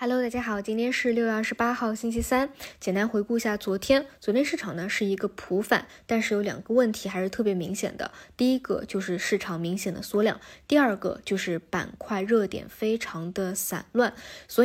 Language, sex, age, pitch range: Chinese, female, 20-39, 190-235 Hz